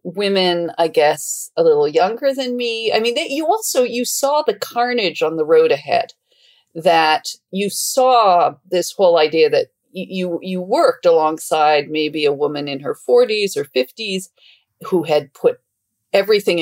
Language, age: English, 40-59